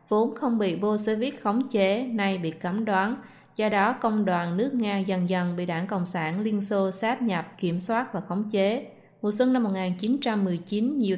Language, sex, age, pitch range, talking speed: Vietnamese, female, 20-39, 185-225 Hz, 205 wpm